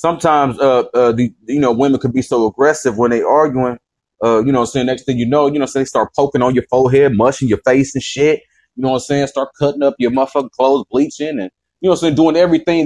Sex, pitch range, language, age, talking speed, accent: male, 130-165 Hz, English, 30-49, 260 wpm, American